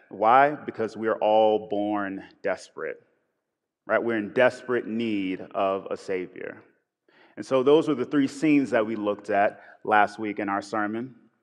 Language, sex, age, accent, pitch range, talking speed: English, male, 30-49, American, 105-130 Hz, 165 wpm